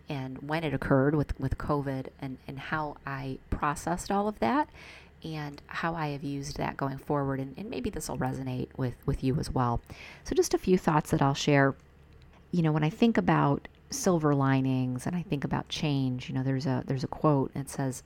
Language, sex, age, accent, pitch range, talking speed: English, female, 30-49, American, 130-155 Hz, 215 wpm